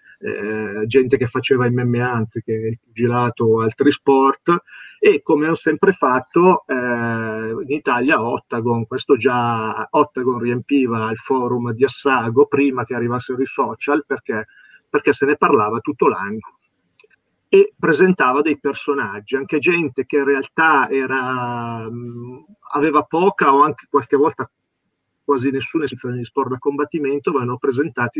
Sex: male